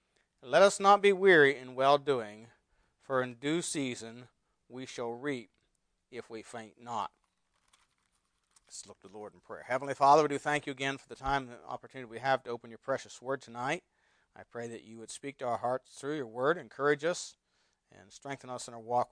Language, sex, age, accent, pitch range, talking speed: English, male, 40-59, American, 115-150 Hz, 205 wpm